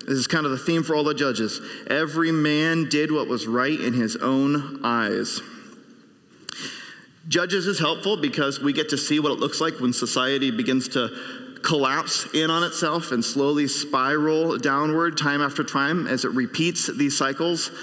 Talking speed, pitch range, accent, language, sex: 175 wpm, 140-170 Hz, American, English, male